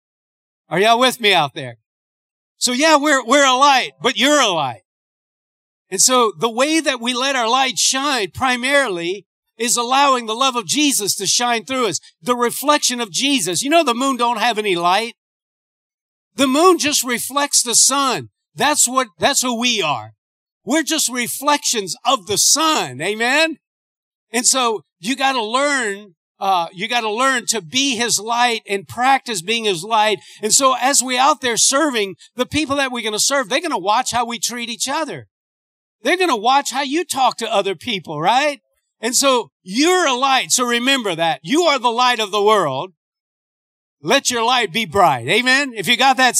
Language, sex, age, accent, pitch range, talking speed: English, male, 50-69, American, 215-275 Hz, 190 wpm